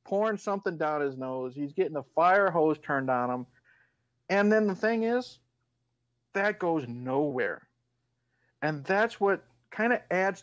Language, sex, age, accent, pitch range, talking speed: English, male, 50-69, American, 130-175 Hz, 155 wpm